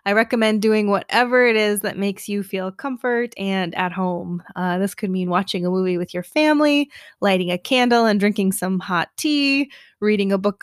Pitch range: 190-235 Hz